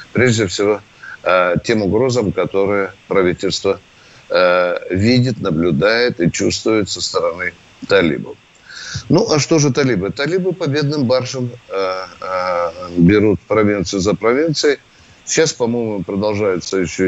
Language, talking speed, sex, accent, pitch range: Russian, 100 wpm, male, native, 100-150 Hz